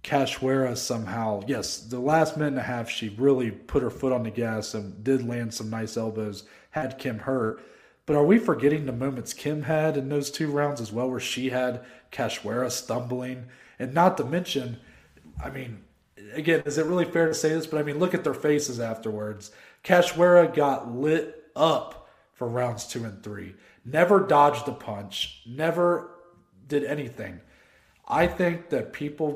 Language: English